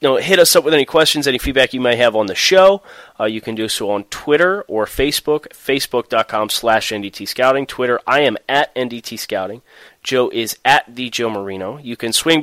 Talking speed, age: 205 wpm, 30-49